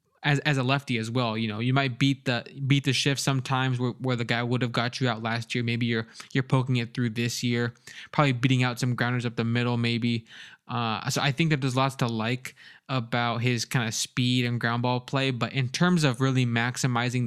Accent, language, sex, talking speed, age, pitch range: American, English, male, 235 wpm, 20-39, 115-135 Hz